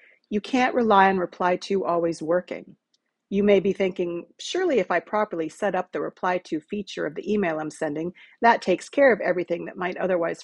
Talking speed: 200 wpm